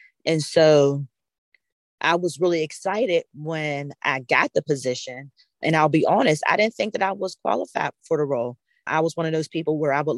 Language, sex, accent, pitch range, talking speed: English, female, American, 135-160 Hz, 200 wpm